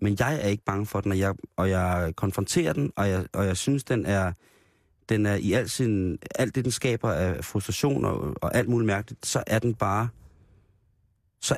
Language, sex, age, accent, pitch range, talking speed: Danish, male, 30-49, native, 95-120 Hz, 205 wpm